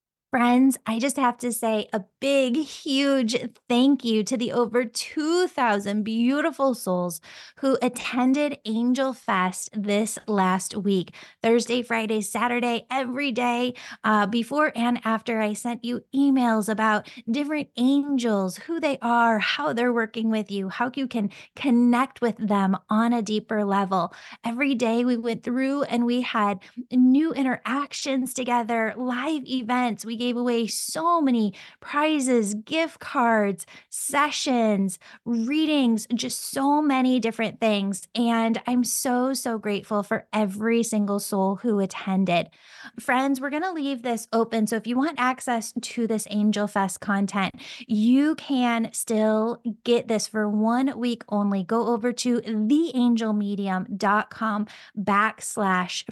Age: 20-39